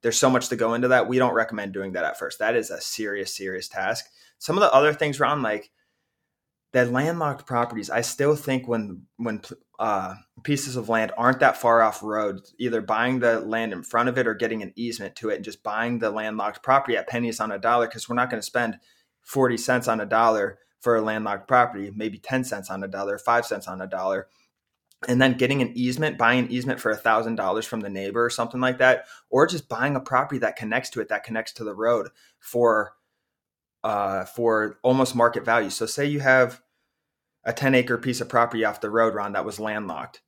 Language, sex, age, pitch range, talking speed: English, male, 20-39, 110-125 Hz, 220 wpm